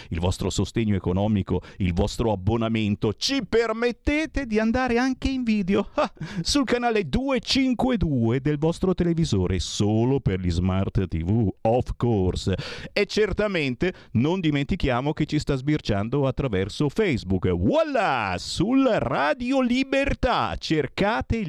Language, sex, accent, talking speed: Italian, male, native, 115 wpm